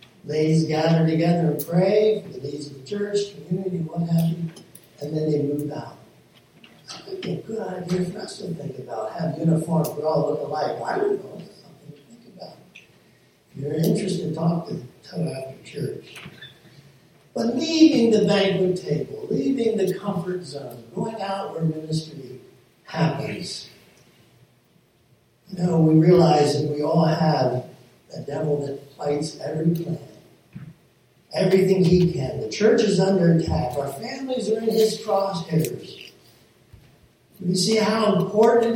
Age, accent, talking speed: 60-79, American, 150 wpm